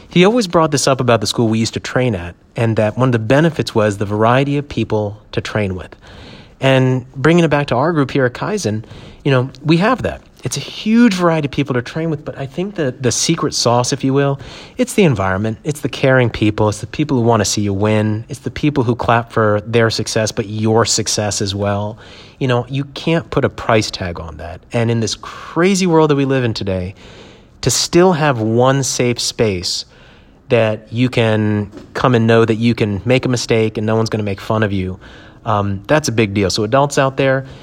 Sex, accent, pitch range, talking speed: male, American, 105-135 Hz, 235 wpm